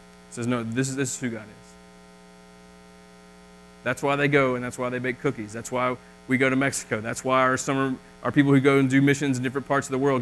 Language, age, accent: English, 30-49, American